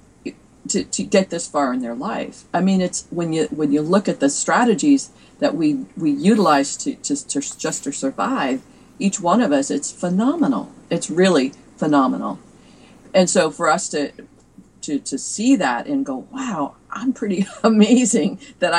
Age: 40-59